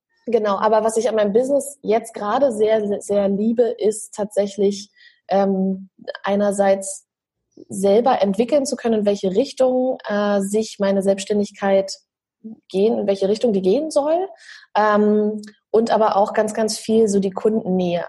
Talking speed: 150 wpm